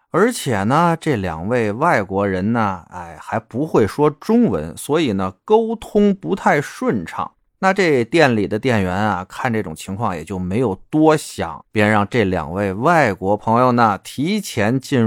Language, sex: Chinese, male